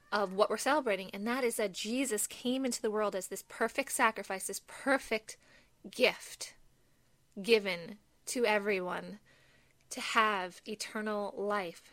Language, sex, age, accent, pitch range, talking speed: English, female, 20-39, American, 200-235 Hz, 135 wpm